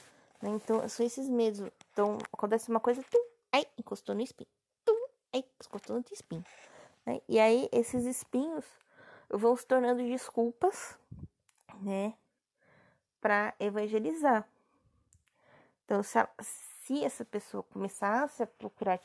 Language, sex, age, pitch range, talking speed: Portuguese, female, 20-39, 205-260 Hz, 120 wpm